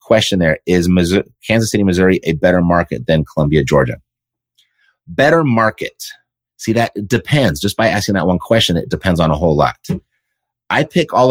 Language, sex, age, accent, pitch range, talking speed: English, male, 30-49, American, 85-115 Hz, 180 wpm